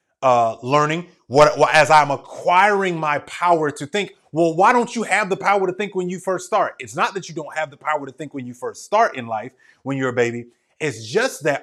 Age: 30-49